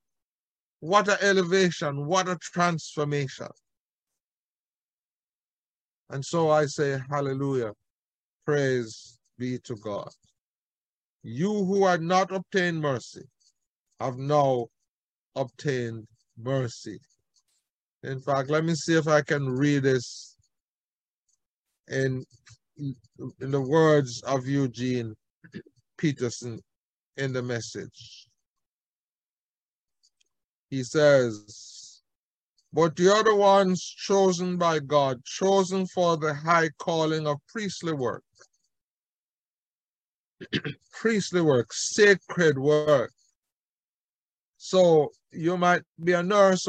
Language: English